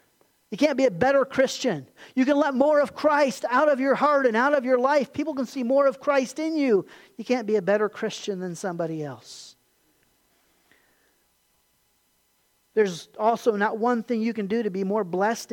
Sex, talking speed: male, 195 wpm